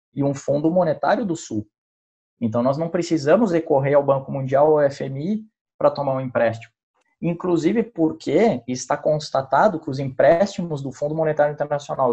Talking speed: 160 wpm